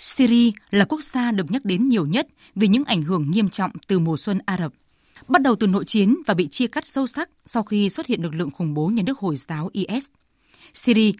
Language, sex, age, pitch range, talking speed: Vietnamese, female, 20-39, 185-245 Hz, 240 wpm